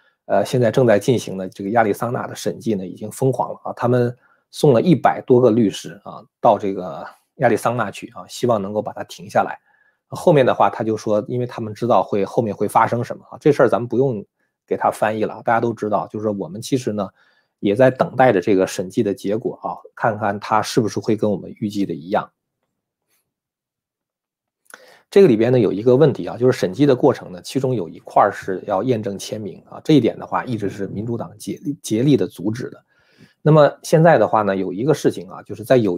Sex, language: male, Chinese